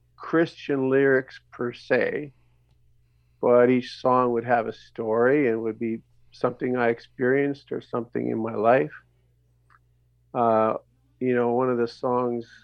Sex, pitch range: male, 110-130 Hz